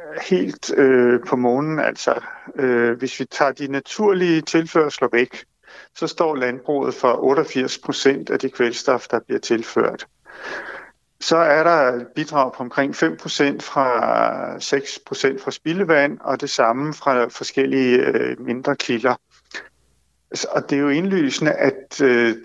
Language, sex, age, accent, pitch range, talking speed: Danish, male, 60-79, native, 125-165 Hz, 135 wpm